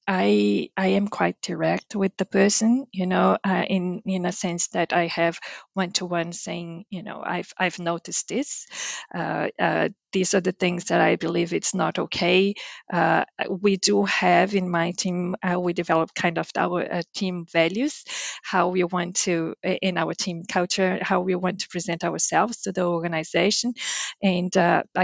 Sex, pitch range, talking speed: female, 175-195 Hz, 175 wpm